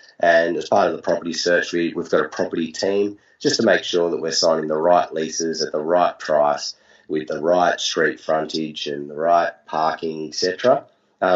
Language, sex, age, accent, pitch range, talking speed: English, male, 30-49, Australian, 85-95 Hz, 200 wpm